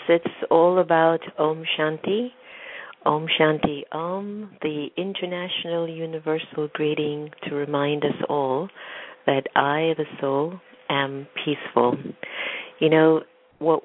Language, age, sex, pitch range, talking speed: English, 50-69, female, 140-160 Hz, 110 wpm